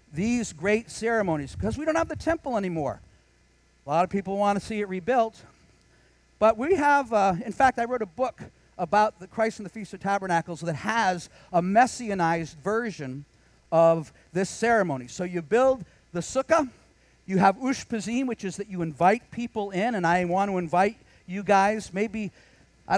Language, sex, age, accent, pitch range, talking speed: English, male, 50-69, American, 160-220 Hz, 180 wpm